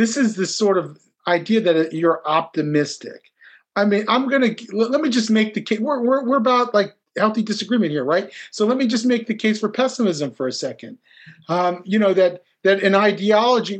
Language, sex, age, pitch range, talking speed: English, male, 40-59, 165-220 Hz, 205 wpm